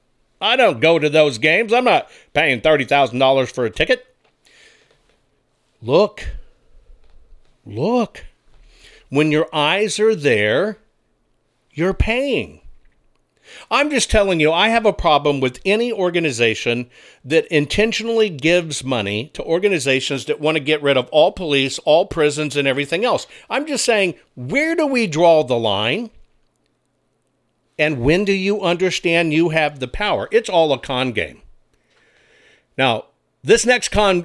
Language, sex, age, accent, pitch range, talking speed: English, male, 50-69, American, 145-210 Hz, 140 wpm